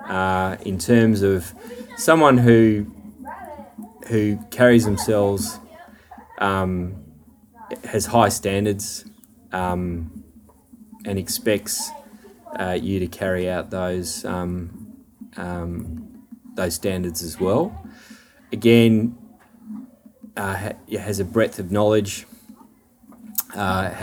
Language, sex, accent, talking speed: English, male, Australian, 95 wpm